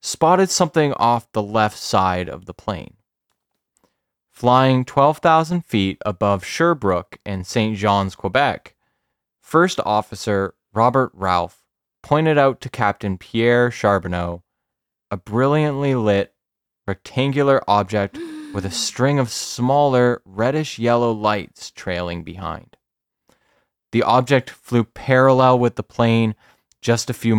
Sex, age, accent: male, 20-39, American